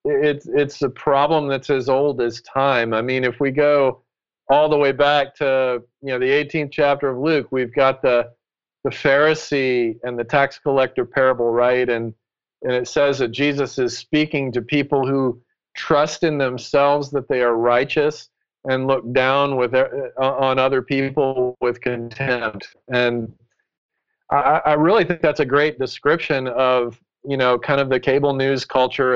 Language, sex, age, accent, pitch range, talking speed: English, male, 40-59, American, 120-145 Hz, 170 wpm